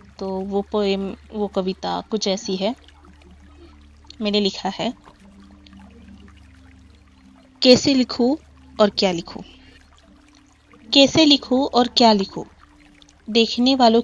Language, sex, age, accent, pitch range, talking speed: Marathi, female, 20-39, native, 190-245 Hz, 75 wpm